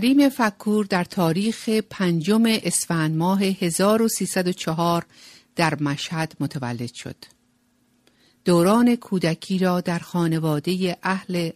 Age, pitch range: 50-69, 155-195 Hz